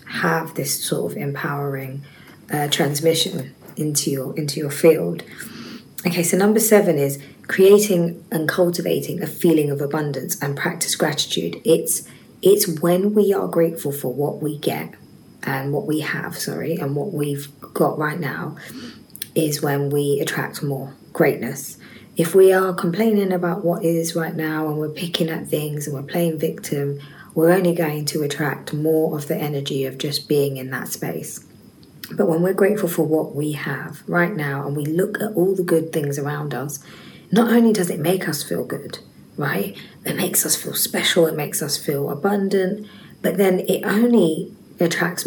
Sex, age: female, 20-39